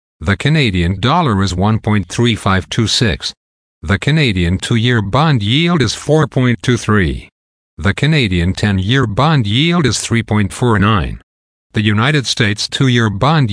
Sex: male